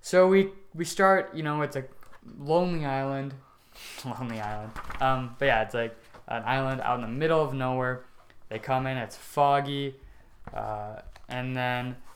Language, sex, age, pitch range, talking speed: English, male, 20-39, 115-140 Hz, 165 wpm